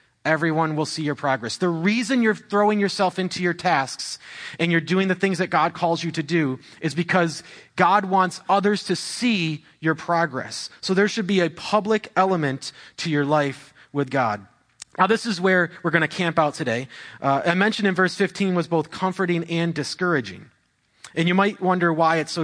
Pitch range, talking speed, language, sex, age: 140-185 Hz, 195 wpm, English, male, 30-49